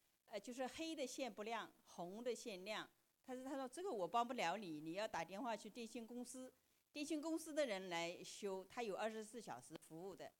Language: Chinese